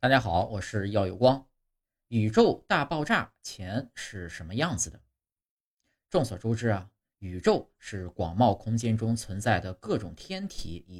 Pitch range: 100-135 Hz